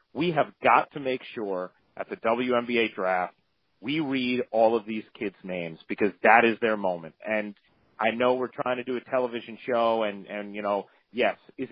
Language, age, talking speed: English, 40-59, 195 wpm